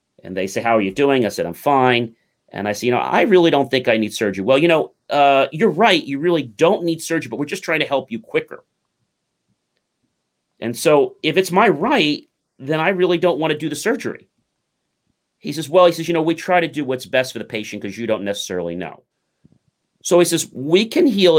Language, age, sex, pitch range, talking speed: English, 40-59, male, 110-165 Hz, 235 wpm